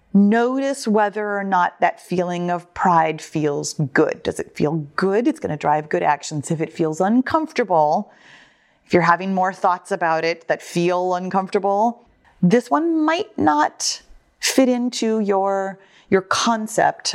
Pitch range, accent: 165-230 Hz, American